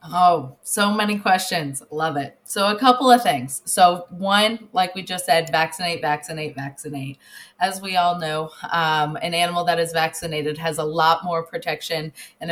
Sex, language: female, English